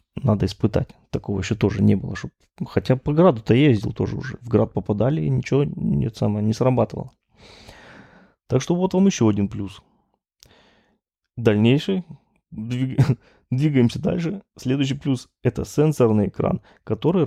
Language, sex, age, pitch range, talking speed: Russian, male, 20-39, 105-135 Hz, 125 wpm